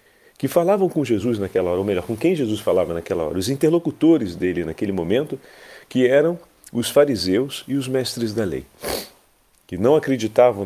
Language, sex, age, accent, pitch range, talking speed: Portuguese, male, 40-59, Brazilian, 105-155 Hz, 175 wpm